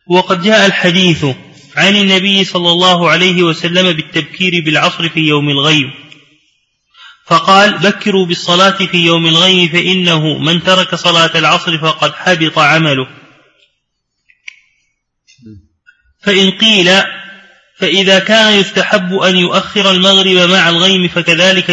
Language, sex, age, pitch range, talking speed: Arabic, male, 30-49, 170-200 Hz, 110 wpm